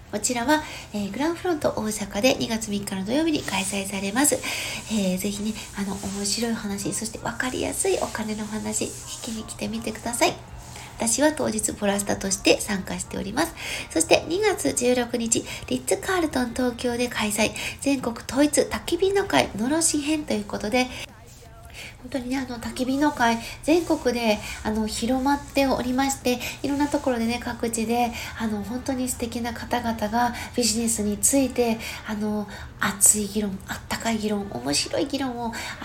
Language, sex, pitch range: Japanese, female, 215-265 Hz